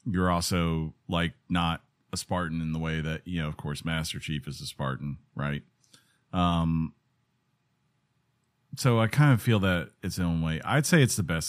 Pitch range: 85-115 Hz